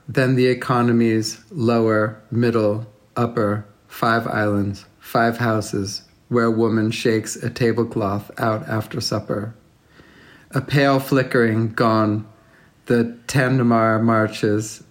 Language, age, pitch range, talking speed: French, 40-59, 110-125 Hz, 105 wpm